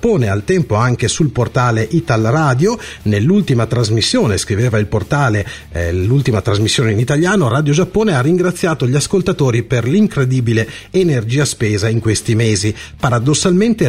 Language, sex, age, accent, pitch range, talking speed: Italian, male, 40-59, native, 115-160 Hz, 130 wpm